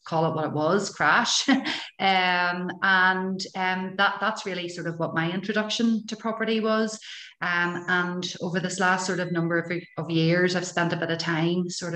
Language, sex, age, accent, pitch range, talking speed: English, female, 30-49, Irish, 165-190 Hz, 185 wpm